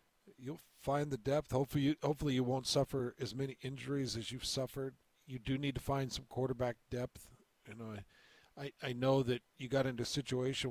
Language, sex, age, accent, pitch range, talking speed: English, male, 50-69, American, 115-135 Hz, 200 wpm